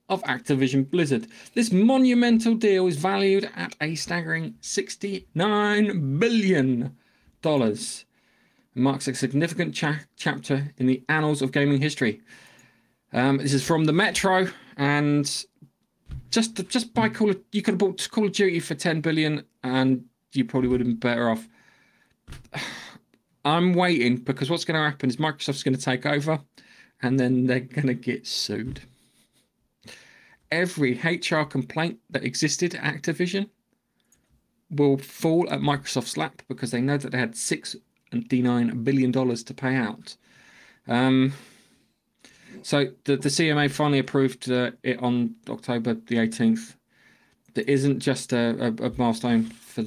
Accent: British